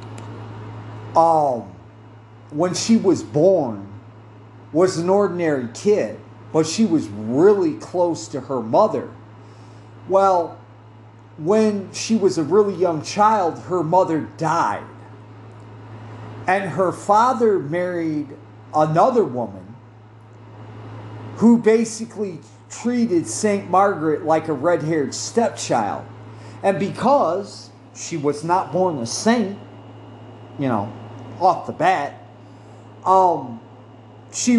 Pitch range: 110-185 Hz